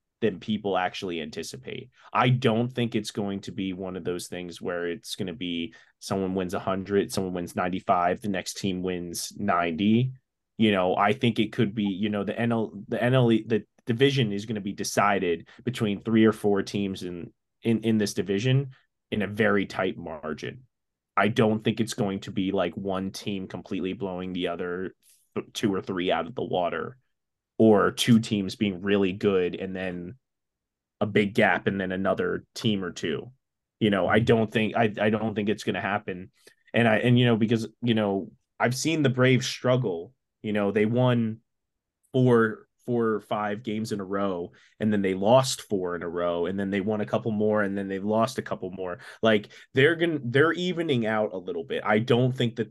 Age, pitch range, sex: 20-39, 95-115 Hz, male